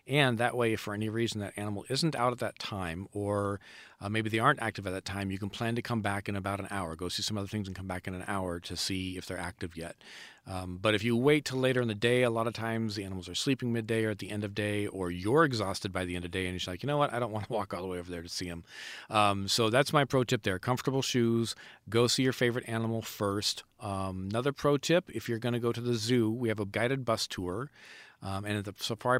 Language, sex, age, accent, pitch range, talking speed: English, male, 40-59, American, 100-120 Hz, 290 wpm